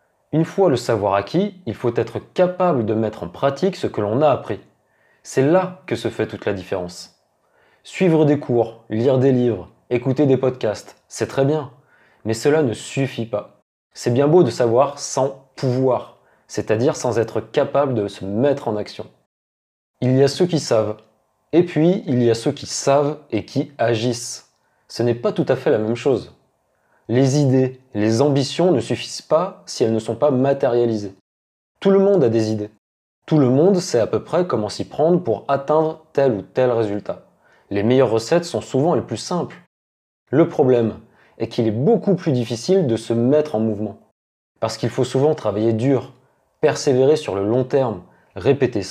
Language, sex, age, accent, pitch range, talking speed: French, male, 20-39, French, 110-150 Hz, 190 wpm